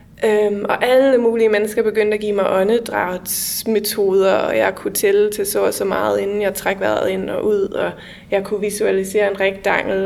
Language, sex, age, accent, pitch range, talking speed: English, female, 20-39, Danish, 200-230 Hz, 190 wpm